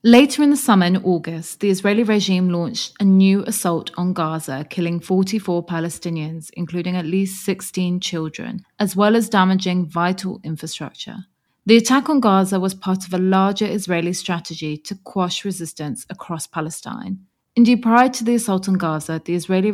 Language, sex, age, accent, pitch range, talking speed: English, female, 30-49, British, 165-205 Hz, 165 wpm